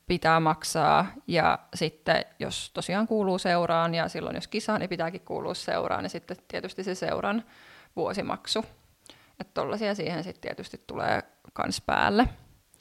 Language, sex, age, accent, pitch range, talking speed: Finnish, female, 20-39, native, 165-200 Hz, 145 wpm